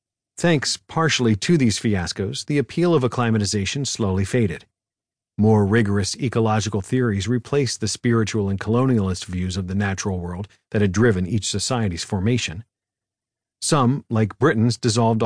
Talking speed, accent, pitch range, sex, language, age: 140 wpm, American, 100-125 Hz, male, English, 50-69